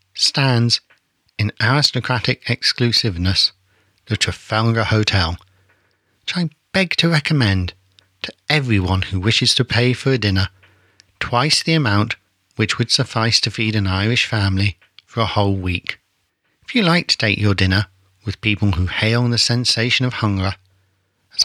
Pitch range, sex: 95-120 Hz, male